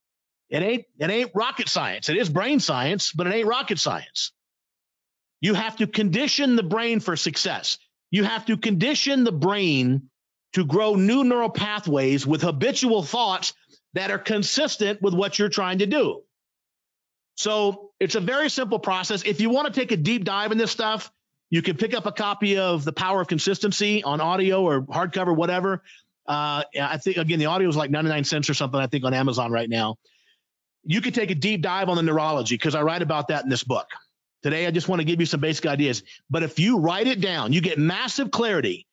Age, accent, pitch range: 50-69, American, 160-220 Hz